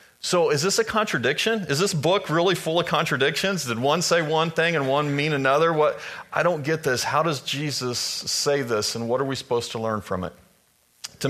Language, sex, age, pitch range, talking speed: English, male, 40-59, 115-140 Hz, 220 wpm